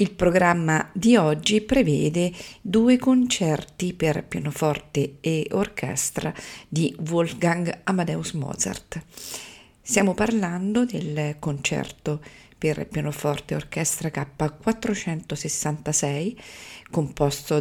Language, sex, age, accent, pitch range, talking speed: Italian, female, 40-59, native, 155-195 Hz, 85 wpm